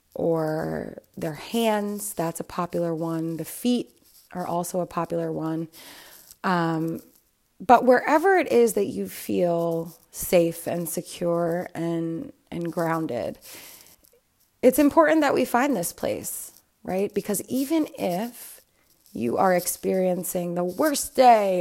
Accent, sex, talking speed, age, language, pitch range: American, female, 125 wpm, 30-49, English, 170-230 Hz